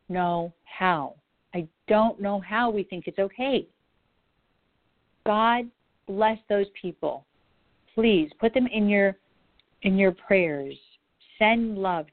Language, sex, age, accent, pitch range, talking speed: English, female, 50-69, American, 175-230 Hz, 120 wpm